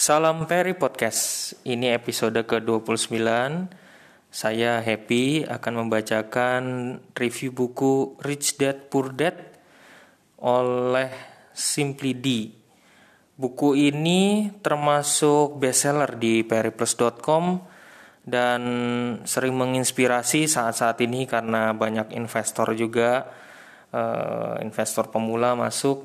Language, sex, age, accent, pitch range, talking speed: Indonesian, male, 20-39, native, 115-135 Hz, 85 wpm